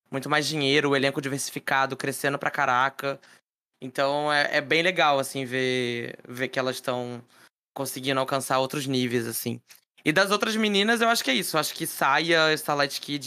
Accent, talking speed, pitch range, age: Brazilian, 175 wpm, 130-155 Hz, 20-39